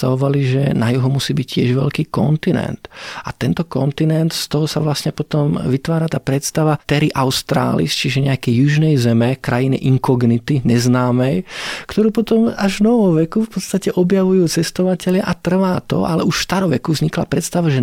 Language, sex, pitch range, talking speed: Slovak, male, 125-165 Hz, 160 wpm